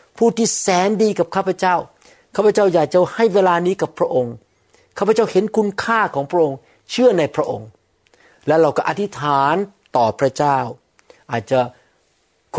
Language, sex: Thai, male